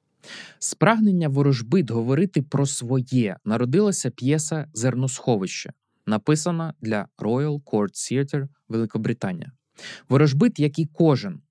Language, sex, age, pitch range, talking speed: Ukrainian, male, 20-39, 115-150 Hz, 95 wpm